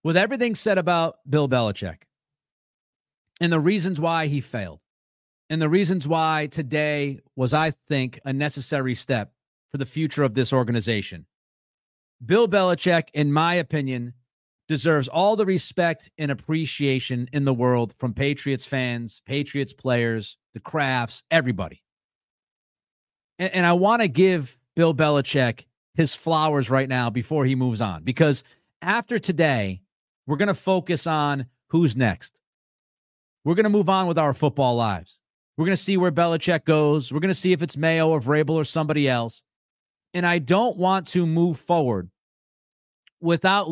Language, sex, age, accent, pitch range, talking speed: English, male, 40-59, American, 130-170 Hz, 155 wpm